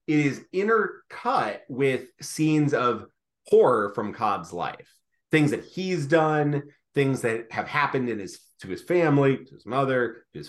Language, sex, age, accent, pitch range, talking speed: English, male, 30-49, American, 120-155 Hz, 160 wpm